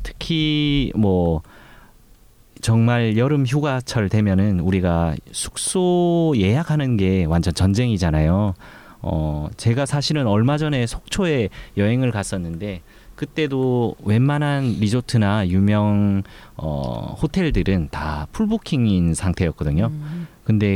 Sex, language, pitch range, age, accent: male, Korean, 90-130 Hz, 30-49, native